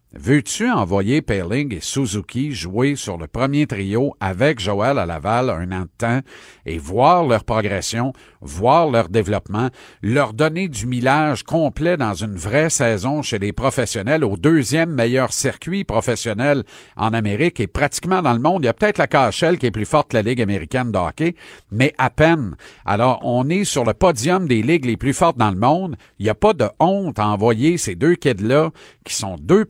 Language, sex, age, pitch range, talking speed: French, male, 50-69, 110-150 Hz, 195 wpm